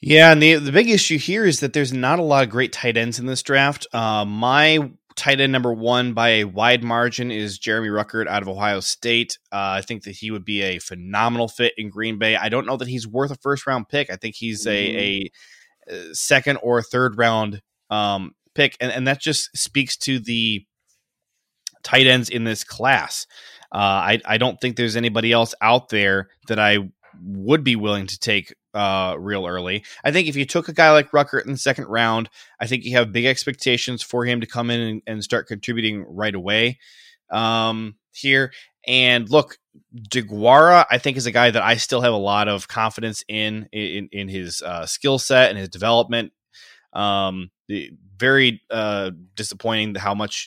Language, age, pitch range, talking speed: English, 20-39, 105-130 Hz, 200 wpm